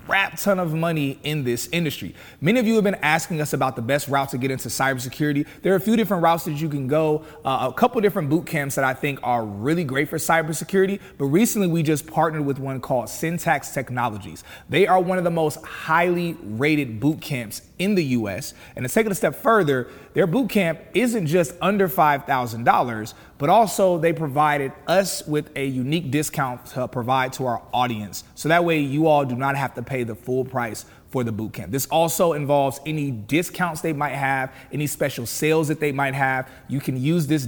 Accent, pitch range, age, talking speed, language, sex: American, 125-165 Hz, 30-49, 215 wpm, English, male